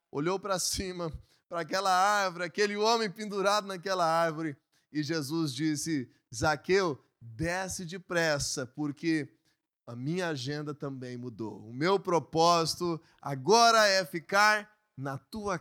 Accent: Brazilian